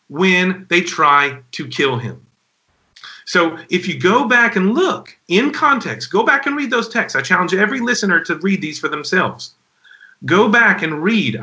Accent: American